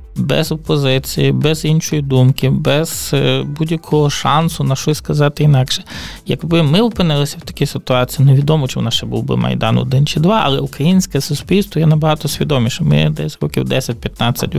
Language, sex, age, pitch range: Ukrainian, male, 20-39, 135-165 Hz